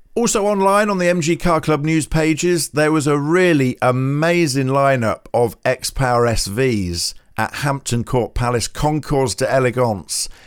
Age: 50-69